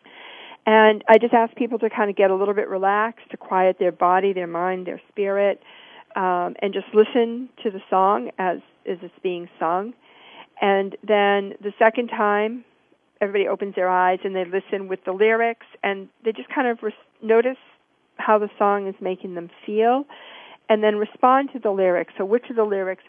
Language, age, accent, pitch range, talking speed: English, 50-69, American, 185-225 Hz, 185 wpm